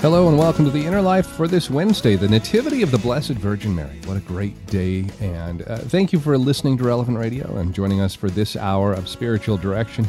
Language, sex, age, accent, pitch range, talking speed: English, male, 40-59, American, 95-120 Hz, 230 wpm